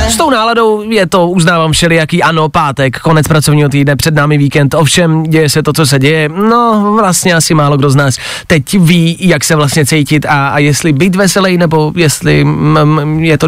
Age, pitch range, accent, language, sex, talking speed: 20-39, 155-200 Hz, native, Czech, male, 205 wpm